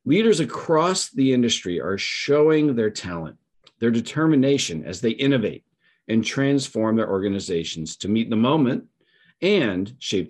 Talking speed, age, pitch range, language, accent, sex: 135 wpm, 50-69, 105-140 Hz, English, American, male